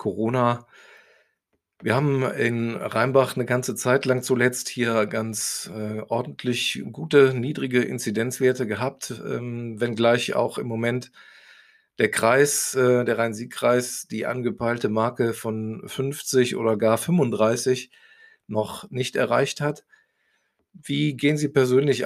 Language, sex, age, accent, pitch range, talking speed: German, male, 40-59, German, 110-130 Hz, 120 wpm